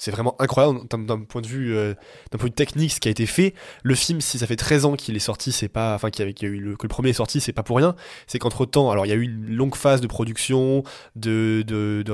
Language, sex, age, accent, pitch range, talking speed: French, male, 20-39, French, 110-140 Hz, 255 wpm